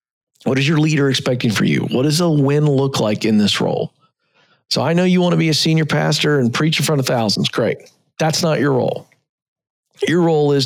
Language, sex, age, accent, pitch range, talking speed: English, male, 40-59, American, 130-155 Hz, 225 wpm